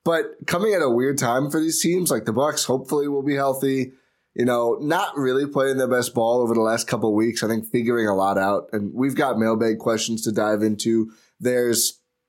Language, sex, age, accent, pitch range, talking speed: English, male, 20-39, American, 110-135 Hz, 220 wpm